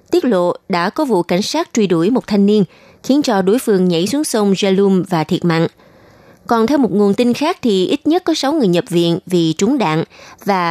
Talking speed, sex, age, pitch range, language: 230 wpm, female, 20-39, 175-235 Hz, Vietnamese